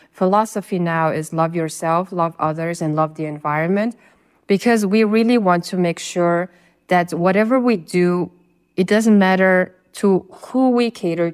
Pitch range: 160-190 Hz